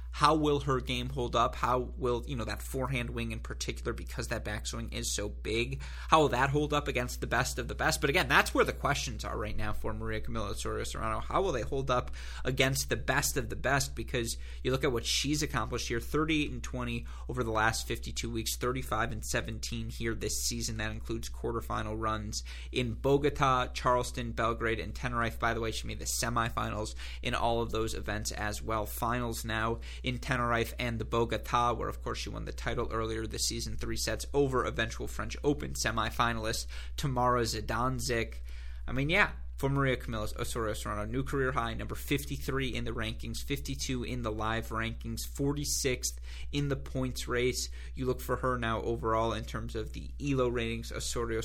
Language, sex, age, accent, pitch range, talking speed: English, male, 20-39, American, 110-125 Hz, 195 wpm